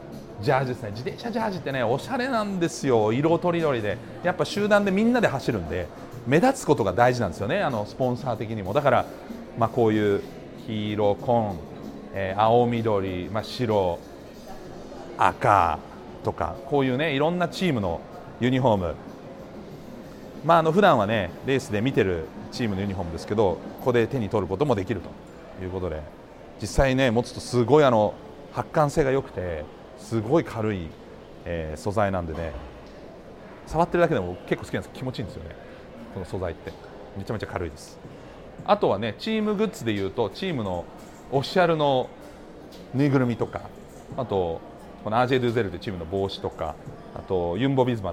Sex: male